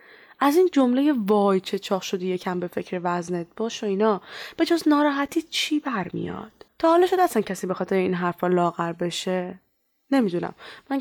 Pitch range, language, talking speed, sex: 185-260 Hz, Persian, 175 wpm, female